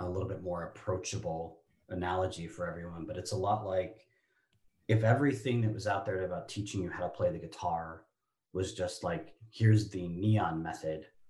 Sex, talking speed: male, 180 wpm